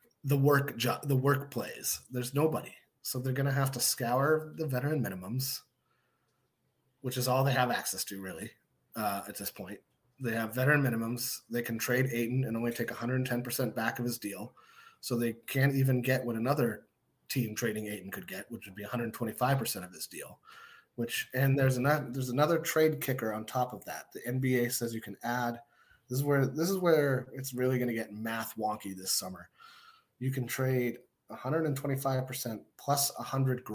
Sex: male